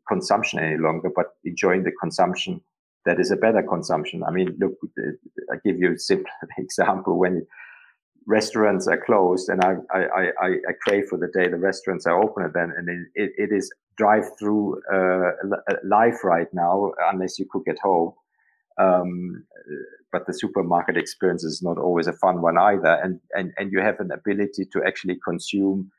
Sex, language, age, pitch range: male, English, 50-69, 90-105 Hz